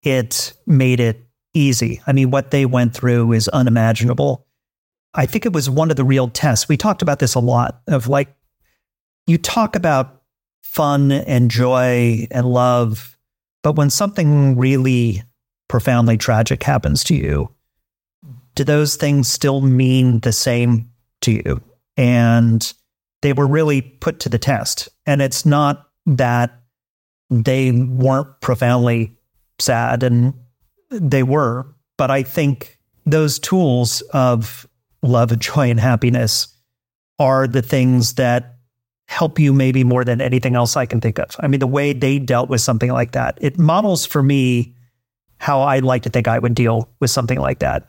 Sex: male